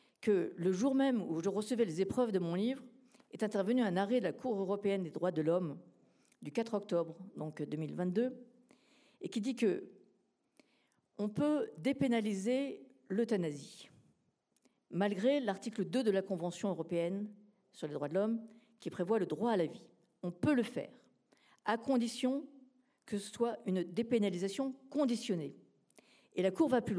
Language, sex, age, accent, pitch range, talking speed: French, female, 50-69, French, 185-245 Hz, 160 wpm